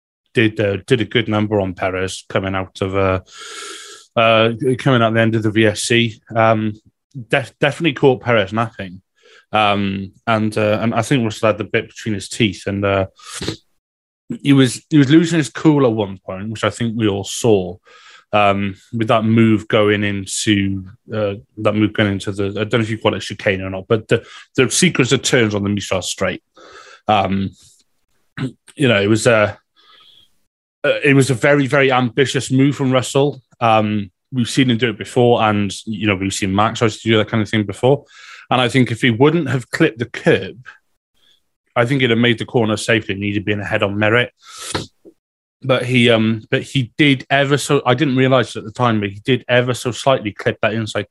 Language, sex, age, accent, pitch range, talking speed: English, male, 20-39, British, 105-125 Hz, 205 wpm